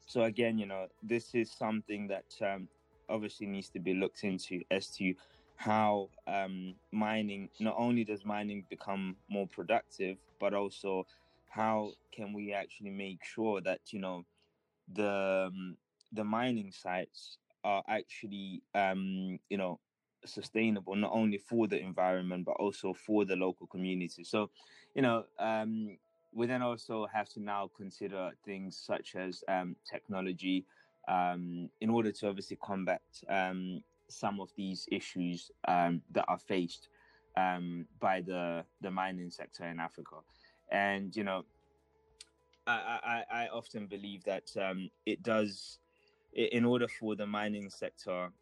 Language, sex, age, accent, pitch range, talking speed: English, male, 20-39, British, 95-110 Hz, 145 wpm